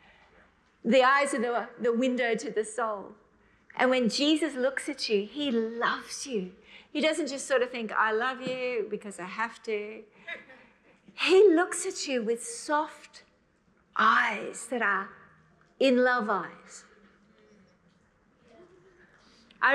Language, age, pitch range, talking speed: English, 50-69, 215-275 Hz, 130 wpm